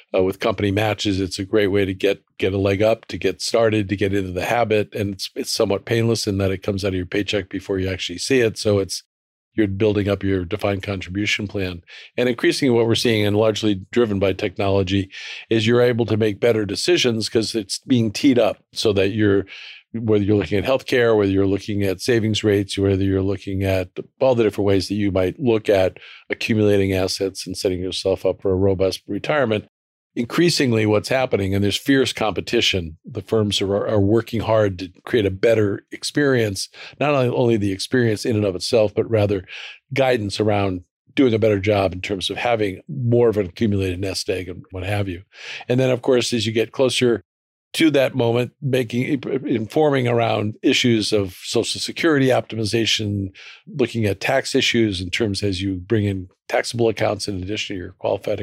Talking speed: 195 wpm